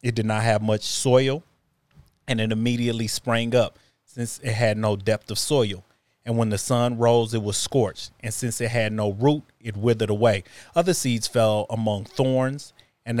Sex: male